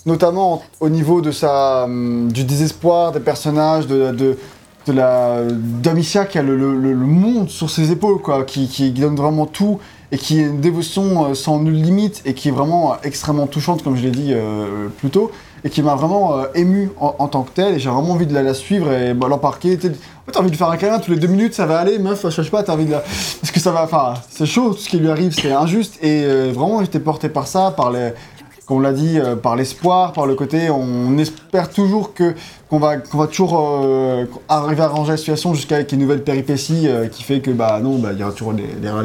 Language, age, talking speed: French, 20-39, 240 wpm